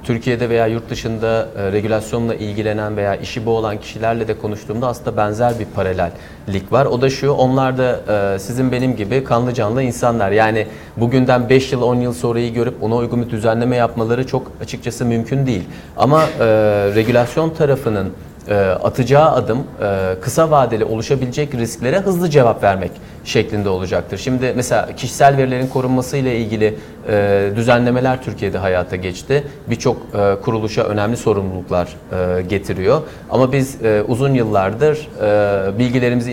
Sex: male